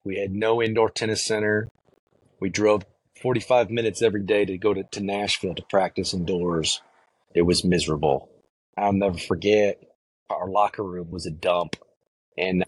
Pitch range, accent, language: 100-115 Hz, American, English